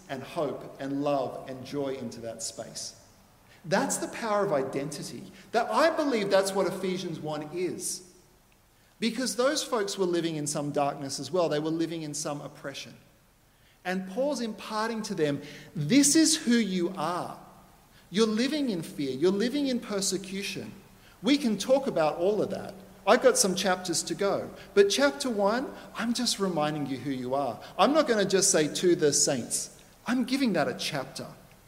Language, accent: English, Australian